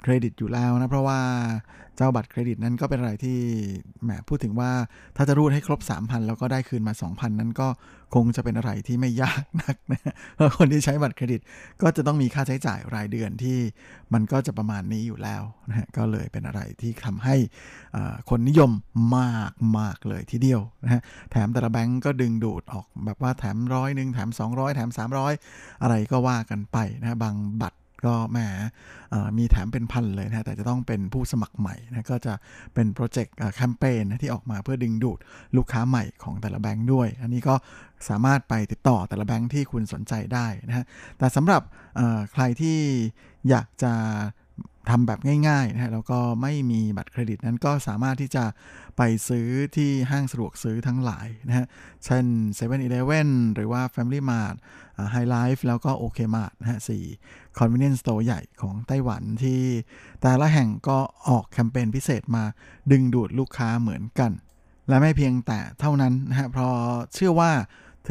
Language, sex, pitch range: Thai, male, 110-130 Hz